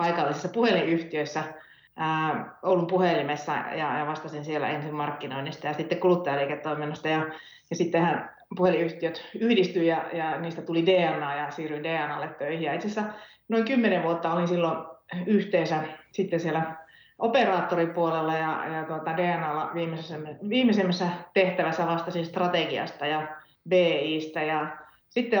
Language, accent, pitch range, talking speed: Finnish, native, 155-185 Hz, 120 wpm